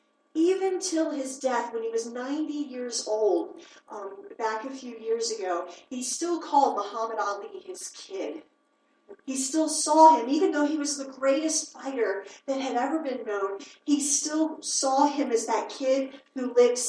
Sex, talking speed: female, 170 wpm